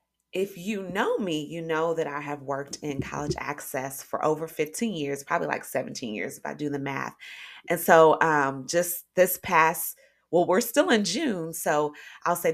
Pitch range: 140-170 Hz